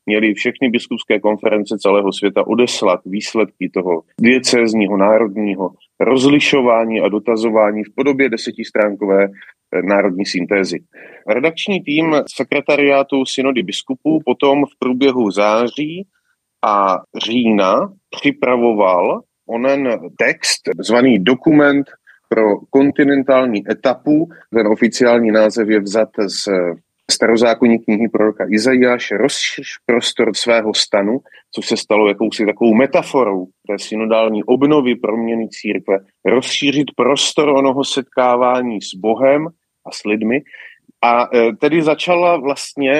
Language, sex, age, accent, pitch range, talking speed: Czech, male, 30-49, native, 110-145 Hz, 105 wpm